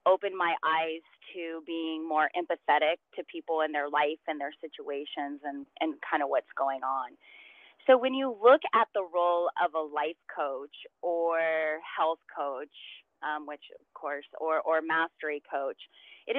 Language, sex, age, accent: English, female, 30-49, American